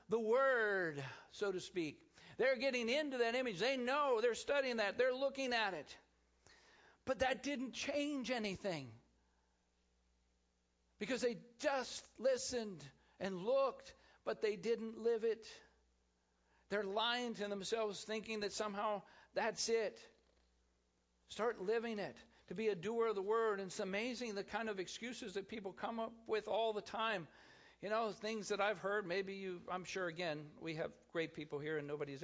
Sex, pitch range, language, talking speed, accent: male, 150-230 Hz, English, 160 wpm, American